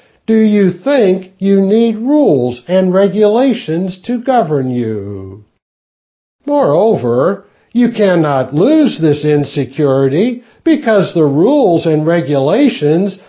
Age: 60-79